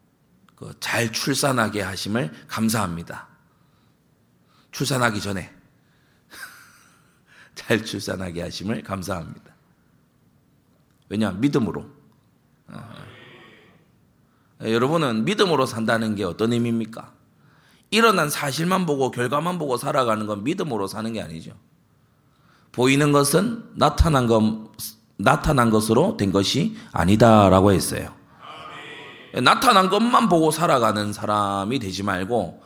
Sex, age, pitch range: male, 40-59, 105-150 Hz